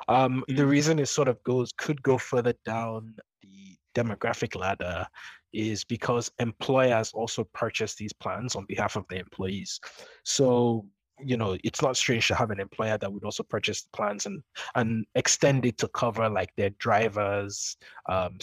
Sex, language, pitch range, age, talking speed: male, English, 105-130 Hz, 20-39, 170 wpm